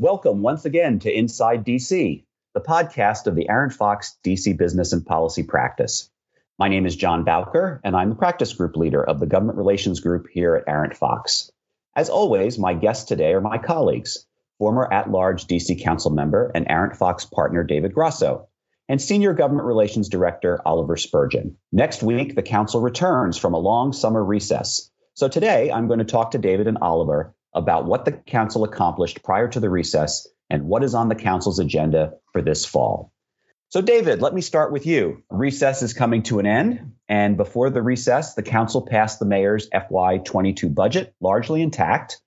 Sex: male